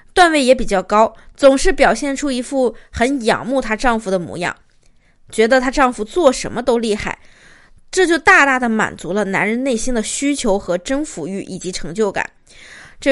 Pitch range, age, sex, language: 210-270 Hz, 20-39, female, Chinese